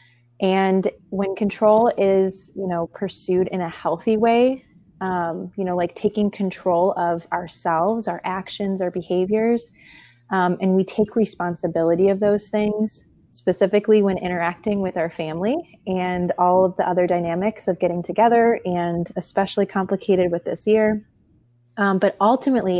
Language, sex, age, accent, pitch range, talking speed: English, female, 20-39, American, 175-200 Hz, 145 wpm